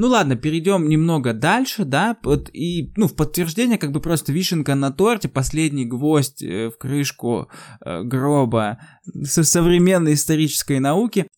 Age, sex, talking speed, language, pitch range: 20-39, male, 135 wpm, Russian, 130-155 Hz